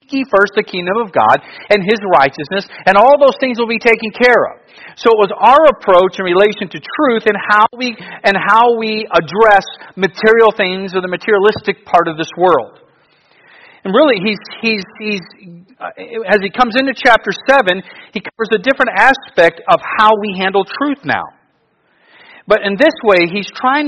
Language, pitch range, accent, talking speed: English, 155-220 Hz, American, 175 wpm